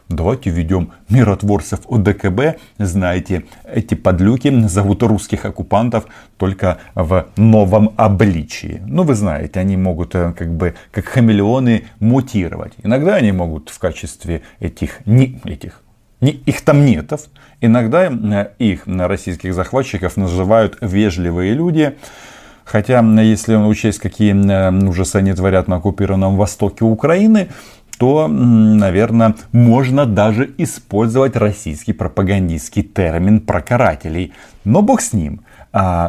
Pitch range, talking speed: 95-115 Hz, 115 wpm